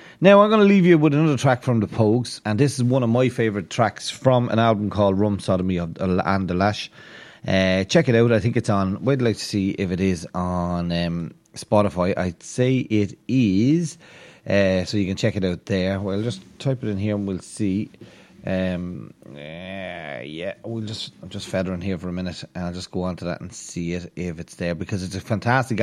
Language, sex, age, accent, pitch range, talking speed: English, male, 30-49, Irish, 95-115 Hz, 225 wpm